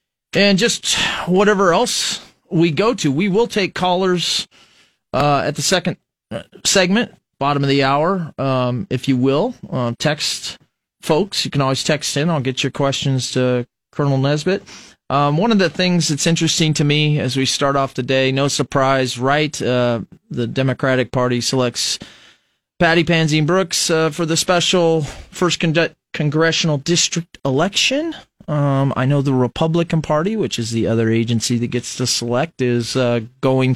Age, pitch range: 30-49, 125-170 Hz